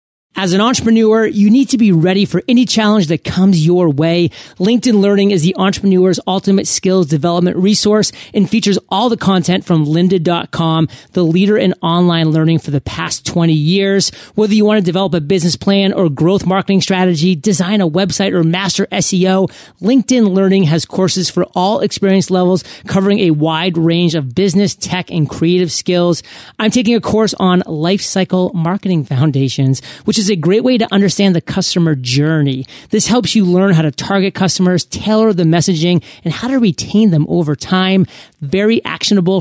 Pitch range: 165-200 Hz